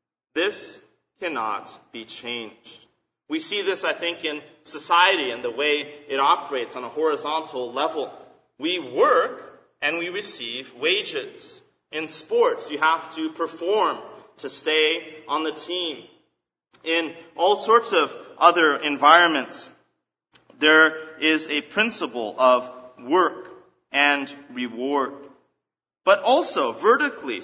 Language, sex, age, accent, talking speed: English, male, 30-49, American, 120 wpm